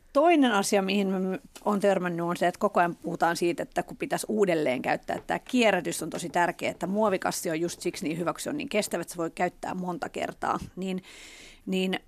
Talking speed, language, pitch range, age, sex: 205 wpm, Finnish, 175-220 Hz, 40-59, female